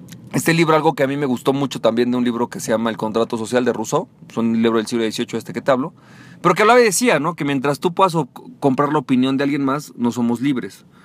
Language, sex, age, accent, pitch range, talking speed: Spanish, male, 40-59, Mexican, 130-175 Hz, 270 wpm